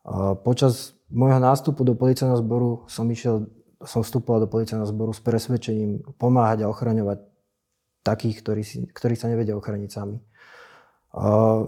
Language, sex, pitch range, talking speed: Slovak, male, 110-125 Hz, 135 wpm